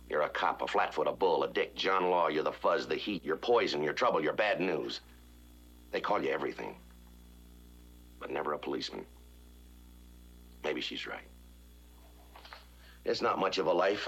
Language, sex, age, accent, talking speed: English, male, 60-79, American, 170 wpm